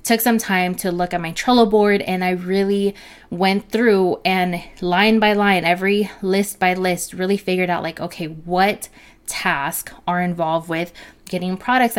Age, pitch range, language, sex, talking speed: 20-39, 175-205 Hz, English, female, 165 wpm